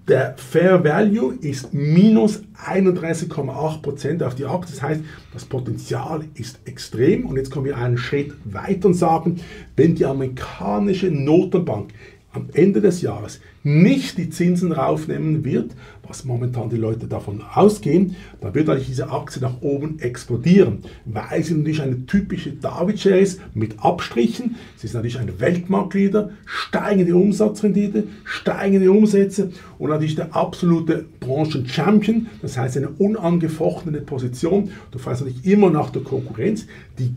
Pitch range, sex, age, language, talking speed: 130-190 Hz, male, 50-69, German, 140 wpm